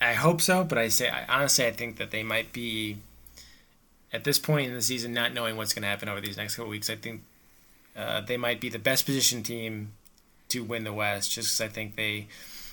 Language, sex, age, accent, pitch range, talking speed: English, male, 20-39, American, 105-120 Hz, 235 wpm